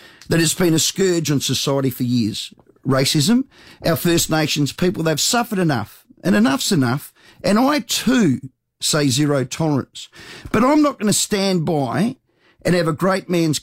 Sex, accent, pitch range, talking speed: male, Australian, 145-205 Hz, 165 wpm